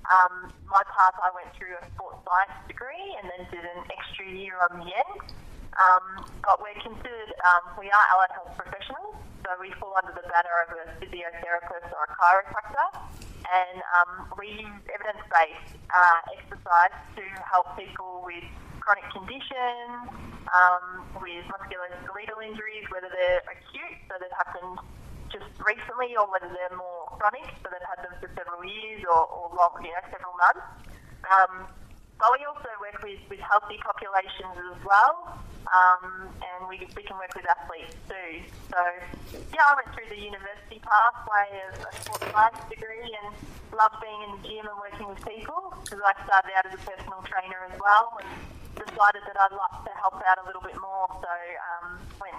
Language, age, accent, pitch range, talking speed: English, 20-39, Australian, 180-210 Hz, 175 wpm